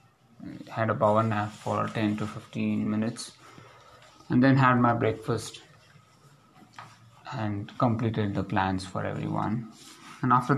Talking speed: 125 wpm